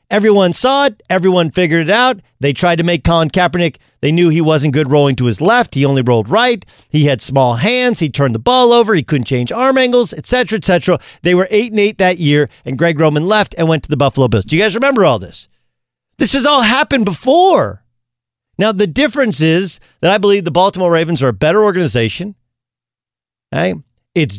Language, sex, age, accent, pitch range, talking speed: English, male, 40-59, American, 135-205 Hz, 215 wpm